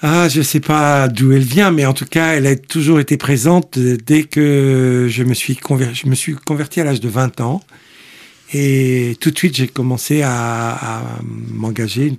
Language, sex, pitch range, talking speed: French, male, 115-140 Hz, 200 wpm